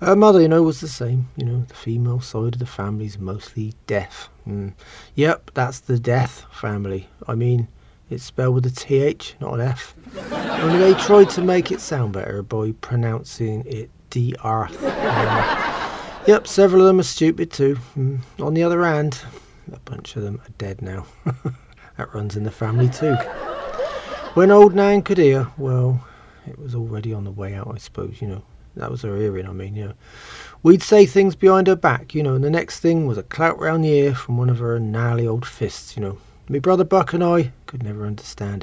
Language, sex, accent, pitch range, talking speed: English, male, British, 110-160 Hz, 205 wpm